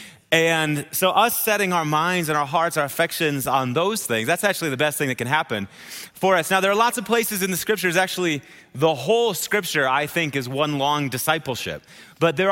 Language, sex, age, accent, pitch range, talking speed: English, male, 30-49, American, 150-195 Hz, 215 wpm